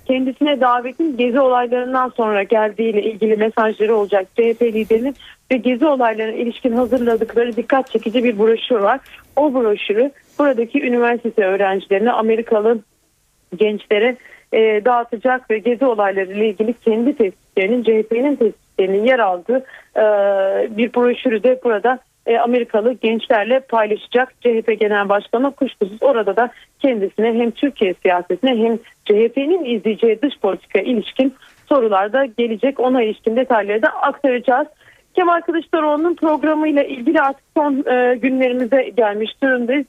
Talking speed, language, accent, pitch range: 120 wpm, Turkish, native, 225-270 Hz